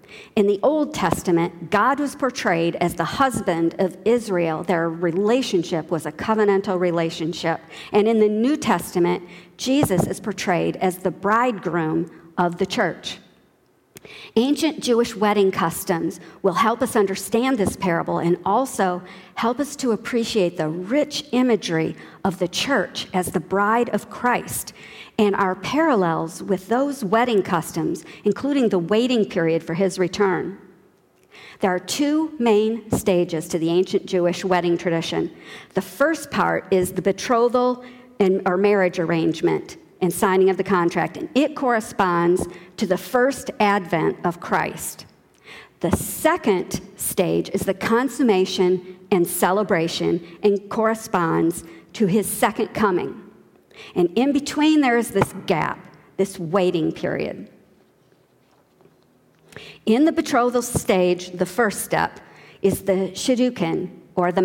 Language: English